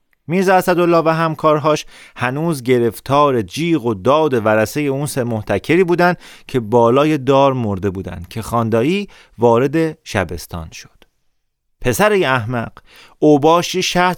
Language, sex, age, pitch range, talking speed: Persian, male, 30-49, 115-165 Hz, 120 wpm